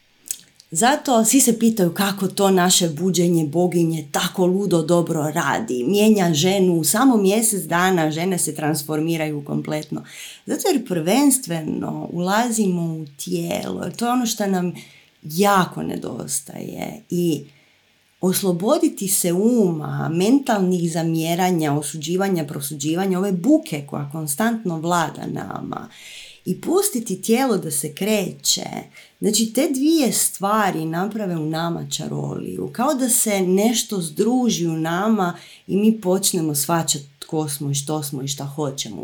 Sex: female